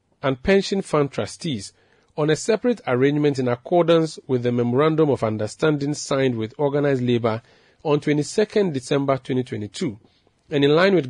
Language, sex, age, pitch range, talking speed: English, male, 40-59, 120-150 Hz, 145 wpm